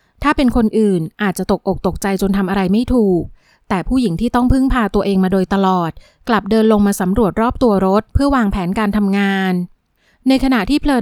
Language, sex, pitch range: Thai, female, 195-235 Hz